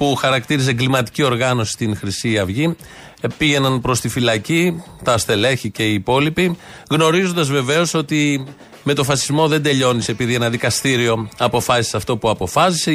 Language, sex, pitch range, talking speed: Greek, male, 115-150 Hz, 145 wpm